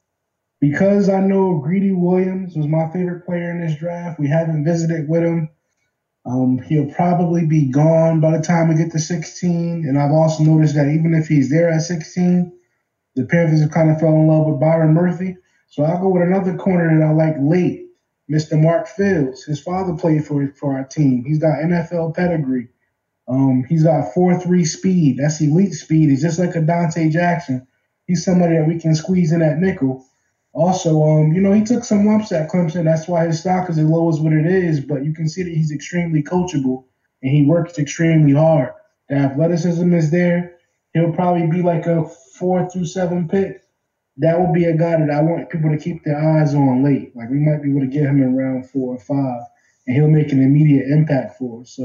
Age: 20-39